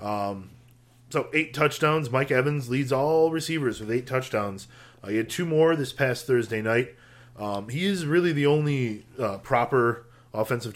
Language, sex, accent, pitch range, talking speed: English, male, American, 110-130 Hz, 165 wpm